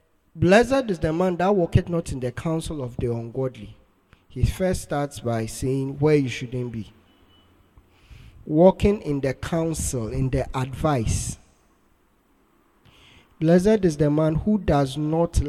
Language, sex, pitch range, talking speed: English, male, 110-155 Hz, 140 wpm